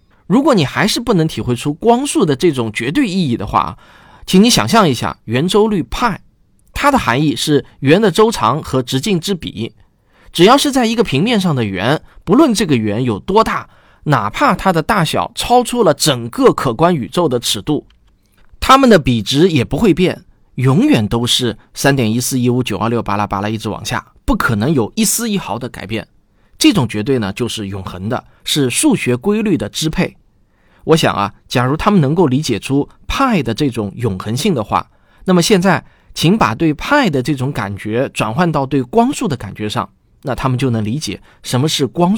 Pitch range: 115-190 Hz